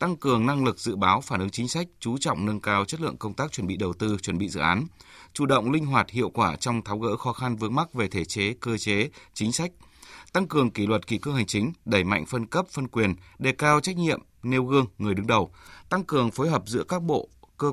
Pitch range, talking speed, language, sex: 100-130 Hz, 260 wpm, Vietnamese, male